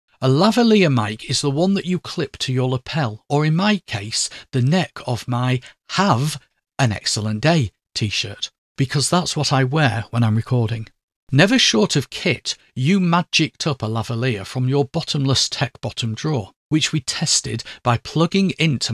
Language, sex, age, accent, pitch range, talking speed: English, male, 50-69, British, 120-160 Hz, 170 wpm